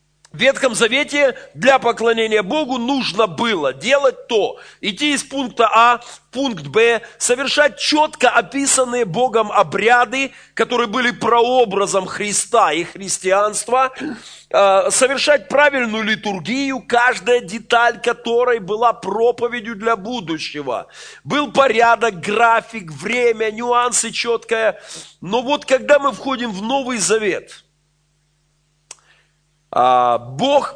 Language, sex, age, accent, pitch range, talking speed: Russian, male, 40-59, native, 205-265 Hz, 105 wpm